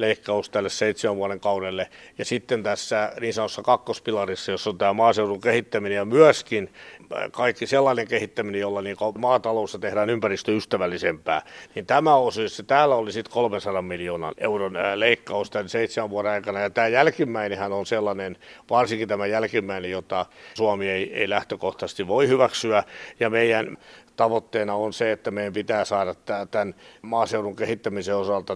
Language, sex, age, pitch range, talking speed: Finnish, male, 60-79, 100-115 Hz, 145 wpm